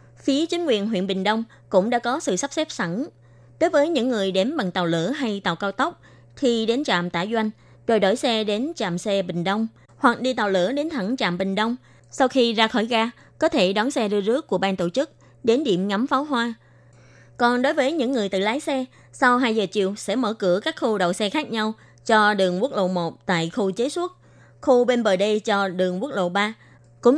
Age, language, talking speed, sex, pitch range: 20-39, Vietnamese, 235 wpm, female, 185-250 Hz